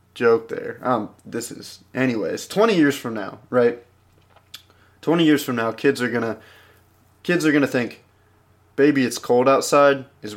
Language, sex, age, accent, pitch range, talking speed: English, male, 20-39, American, 105-150 Hz, 155 wpm